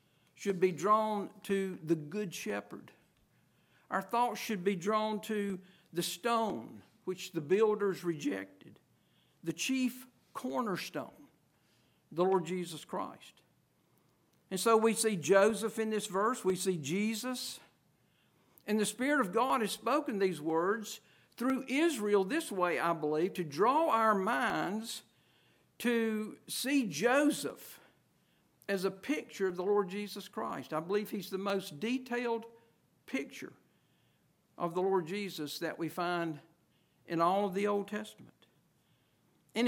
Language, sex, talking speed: English, male, 135 wpm